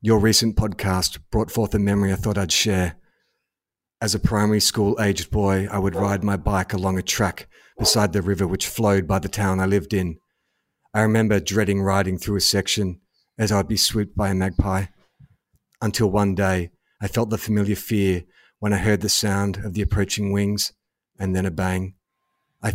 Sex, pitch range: male, 100-115 Hz